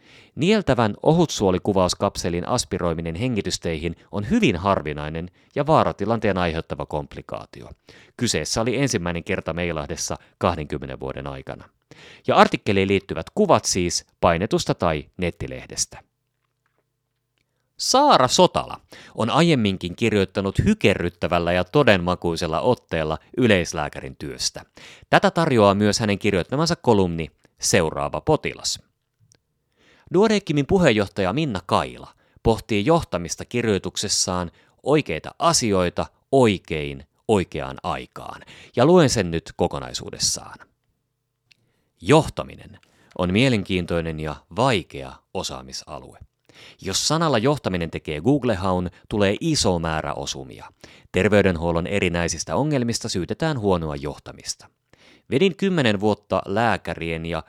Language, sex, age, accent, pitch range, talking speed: Finnish, male, 30-49, native, 85-120 Hz, 95 wpm